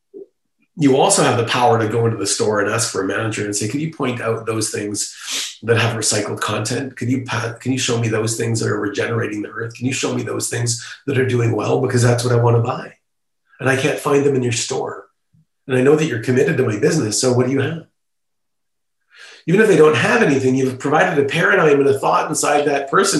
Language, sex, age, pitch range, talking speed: English, male, 30-49, 120-155 Hz, 245 wpm